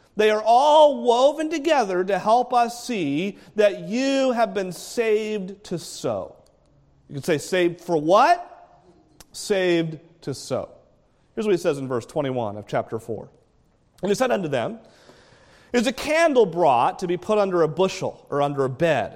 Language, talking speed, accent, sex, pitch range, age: English, 170 wpm, American, male, 160-235 Hz, 40-59